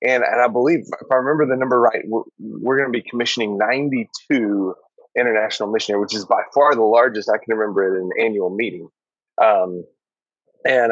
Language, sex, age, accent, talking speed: English, male, 30-49, American, 185 wpm